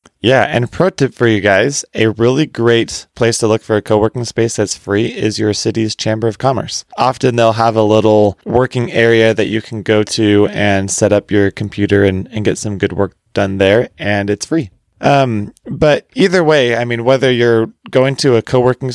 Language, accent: English, American